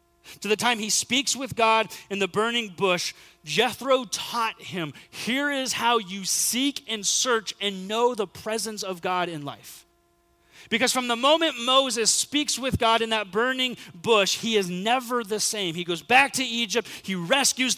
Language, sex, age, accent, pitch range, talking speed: English, male, 30-49, American, 175-260 Hz, 180 wpm